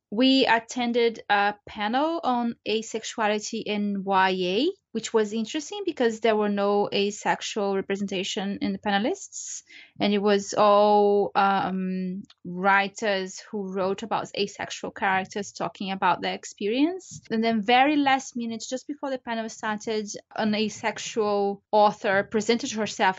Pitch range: 205-275 Hz